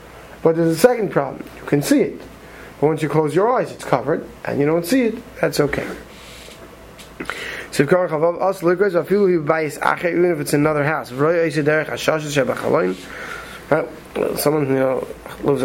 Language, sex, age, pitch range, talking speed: English, male, 30-49, 155-195 Hz, 120 wpm